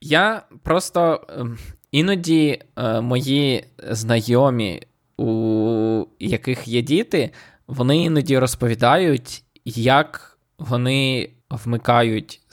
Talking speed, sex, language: 70 wpm, male, Ukrainian